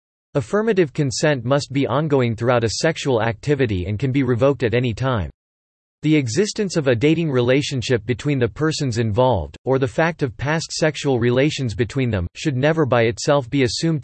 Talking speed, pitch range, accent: 175 wpm, 115-150 Hz, American